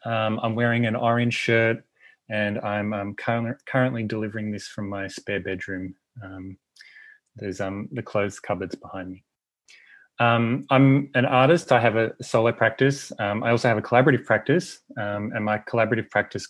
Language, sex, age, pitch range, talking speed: English, male, 20-39, 105-125 Hz, 165 wpm